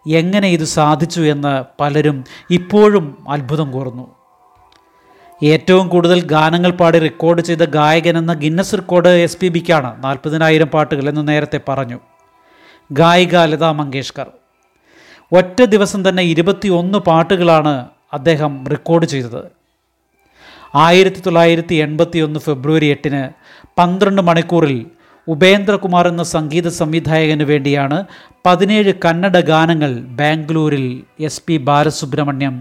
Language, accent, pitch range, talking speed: Malayalam, native, 150-180 Hz, 100 wpm